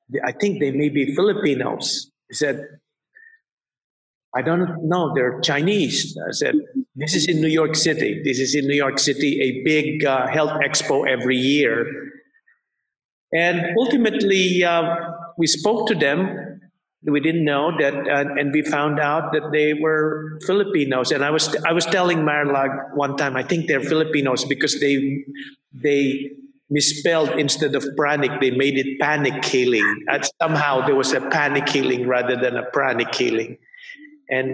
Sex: male